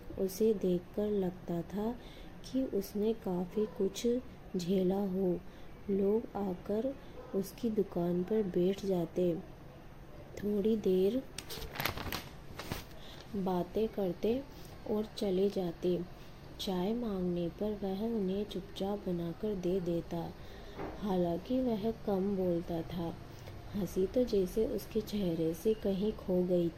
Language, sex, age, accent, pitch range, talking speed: Hindi, female, 20-39, native, 180-210 Hz, 105 wpm